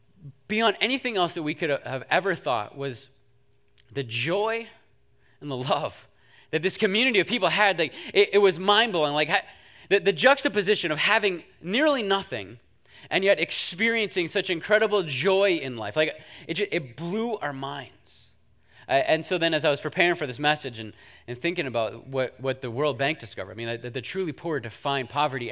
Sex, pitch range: male, 130-195 Hz